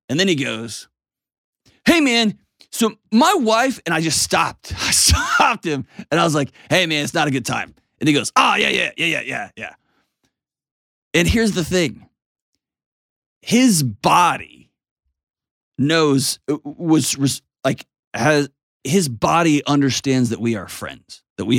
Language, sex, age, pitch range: English, male, 30-49, 115-150 Hz